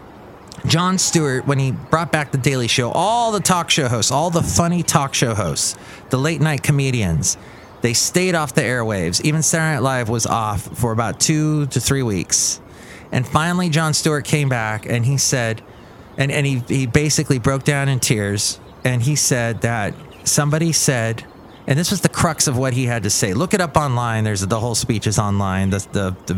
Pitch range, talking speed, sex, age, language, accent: 110-145 Hz, 200 wpm, male, 30-49, English, American